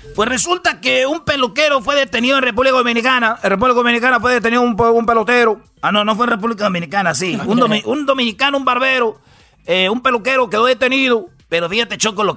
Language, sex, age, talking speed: Spanish, male, 40-59, 195 wpm